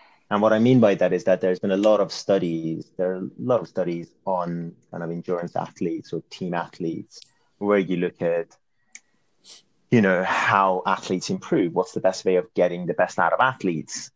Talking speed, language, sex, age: 205 wpm, English, male, 30-49